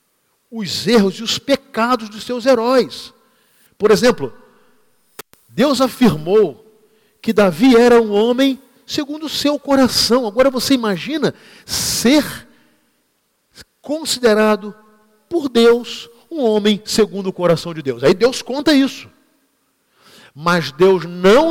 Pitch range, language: 215-275 Hz, Portuguese